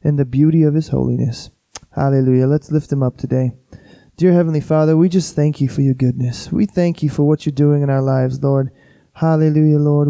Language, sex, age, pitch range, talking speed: English, male, 20-39, 140-165 Hz, 210 wpm